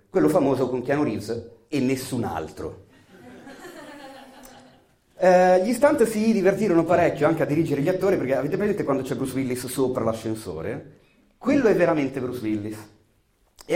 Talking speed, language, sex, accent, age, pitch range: 150 wpm, Italian, male, native, 30-49, 110-150 Hz